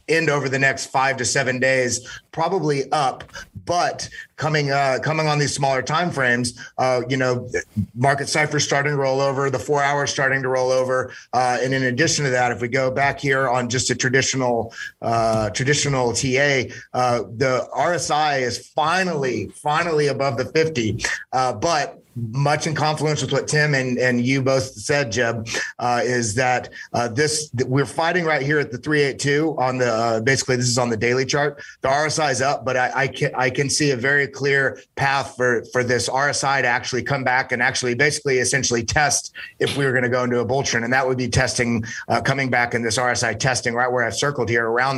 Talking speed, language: 205 wpm, English